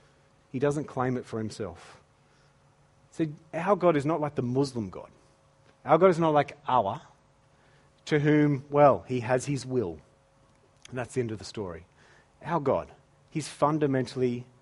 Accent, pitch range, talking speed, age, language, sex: Australian, 130-160 Hz, 160 wpm, 30-49, English, male